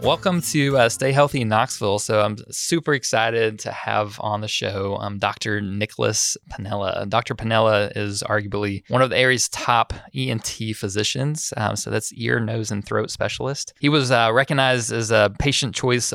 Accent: American